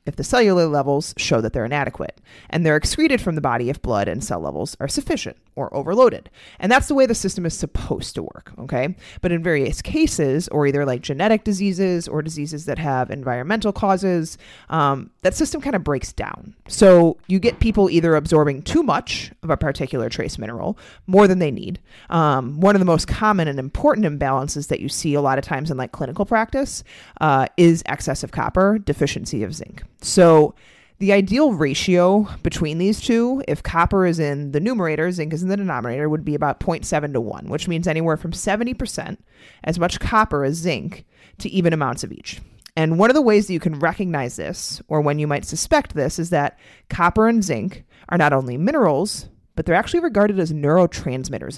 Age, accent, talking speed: 30-49, American, 200 wpm